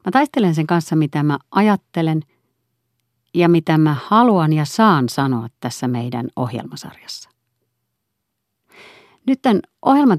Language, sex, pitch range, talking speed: Finnish, female, 120-150 Hz, 120 wpm